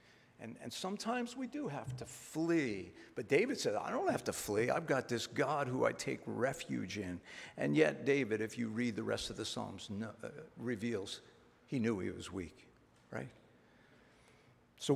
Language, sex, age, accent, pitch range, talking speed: English, male, 60-79, American, 105-145 Hz, 185 wpm